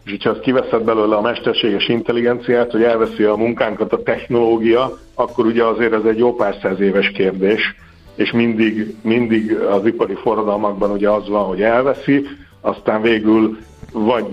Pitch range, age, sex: 105-120 Hz, 60-79, male